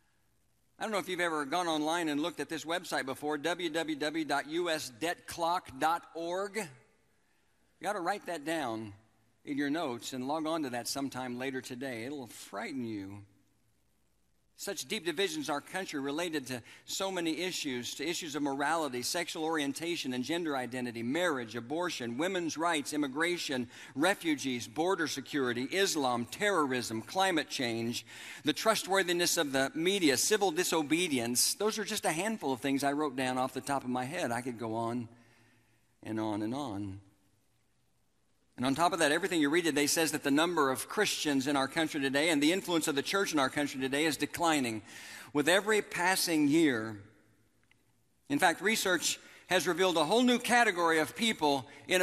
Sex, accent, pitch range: male, American, 125-175 Hz